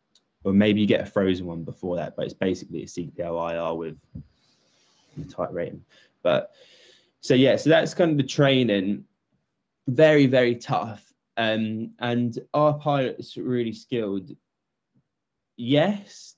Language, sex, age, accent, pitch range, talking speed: English, male, 10-29, British, 95-115 Hz, 140 wpm